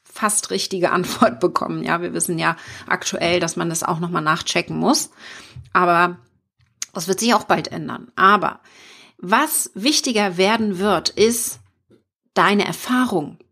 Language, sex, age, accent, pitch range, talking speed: German, female, 40-59, German, 180-235 Hz, 140 wpm